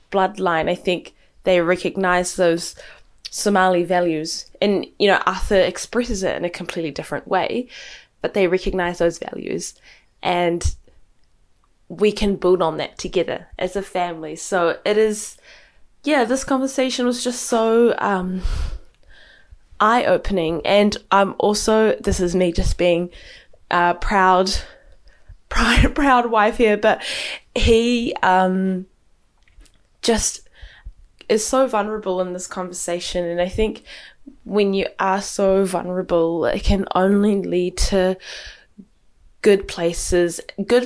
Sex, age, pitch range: female, 10-29, 175-220 Hz